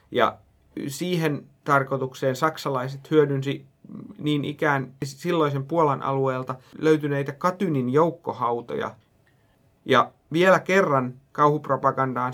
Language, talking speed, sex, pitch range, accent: Finnish, 85 wpm, male, 130-150 Hz, native